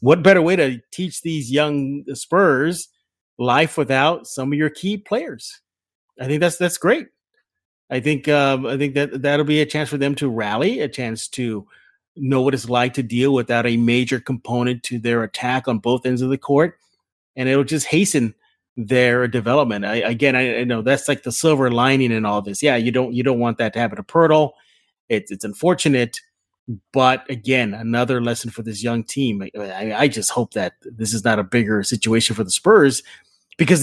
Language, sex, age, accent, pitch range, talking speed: English, male, 30-49, American, 120-155 Hz, 200 wpm